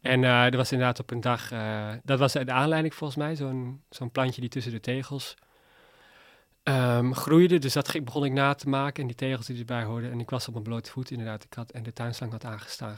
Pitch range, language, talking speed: 115-135 Hz, Dutch, 245 wpm